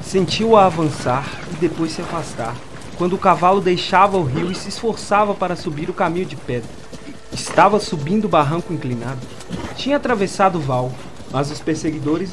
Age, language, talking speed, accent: 20-39, Portuguese, 165 wpm, Brazilian